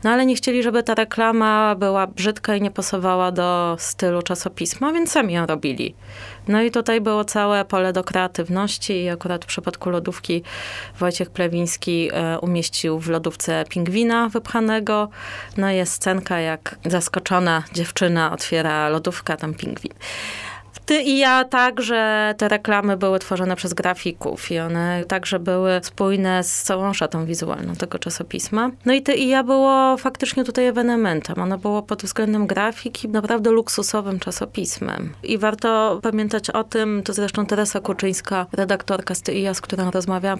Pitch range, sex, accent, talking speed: 180-220 Hz, female, native, 155 wpm